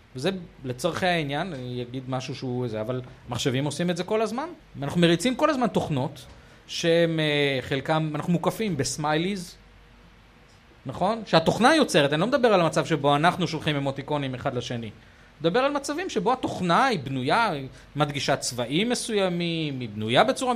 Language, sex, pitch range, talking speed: Hebrew, male, 135-185 Hz, 160 wpm